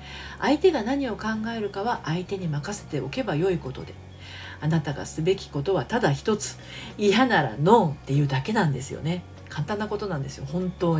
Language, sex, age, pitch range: Japanese, female, 40-59, 145-215 Hz